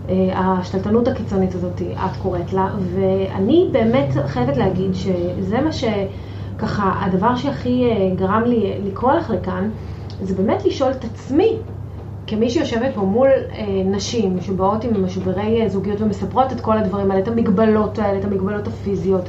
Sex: female